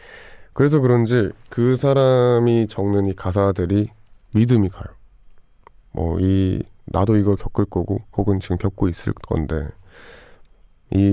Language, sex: Korean, male